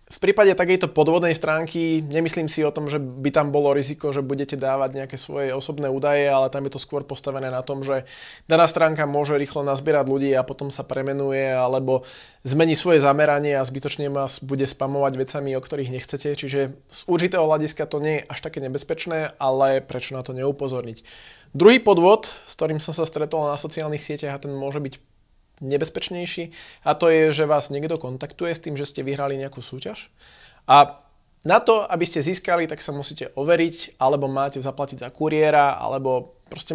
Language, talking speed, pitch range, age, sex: Slovak, 185 wpm, 135-160 Hz, 20-39, male